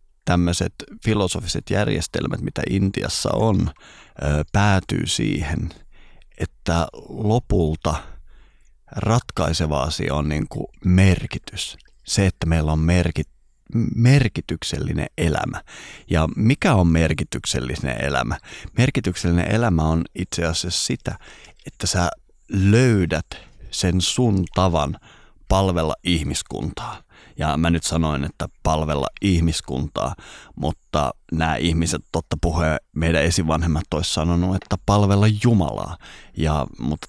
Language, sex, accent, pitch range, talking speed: Finnish, male, native, 80-95 Hz, 95 wpm